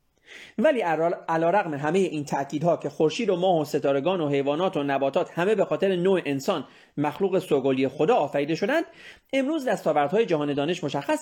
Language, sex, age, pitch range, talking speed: Persian, male, 30-49, 150-230 Hz, 165 wpm